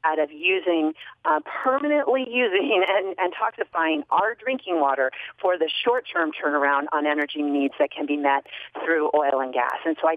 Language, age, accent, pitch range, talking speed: English, 40-59, American, 150-200 Hz, 170 wpm